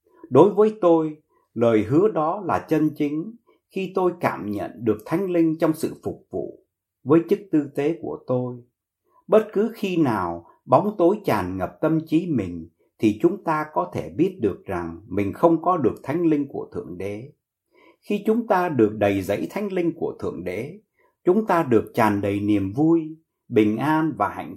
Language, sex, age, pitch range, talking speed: Vietnamese, male, 60-79, 115-170 Hz, 185 wpm